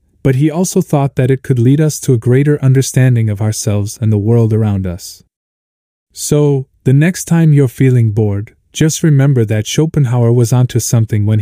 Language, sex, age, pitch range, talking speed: English, male, 20-39, 110-140 Hz, 185 wpm